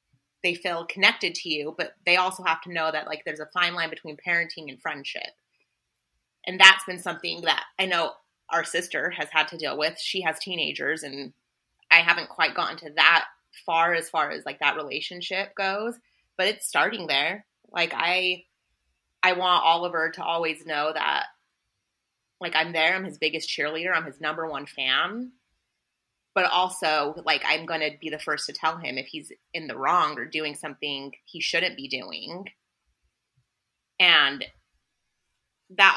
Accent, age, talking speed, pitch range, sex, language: American, 30-49, 175 wpm, 145-180 Hz, female, English